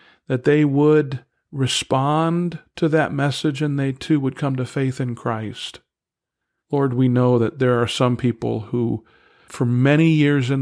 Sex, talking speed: male, 165 wpm